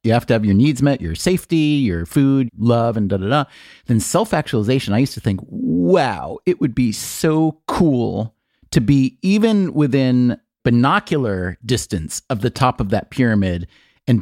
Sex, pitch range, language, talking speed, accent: male, 105-145 Hz, English, 175 wpm, American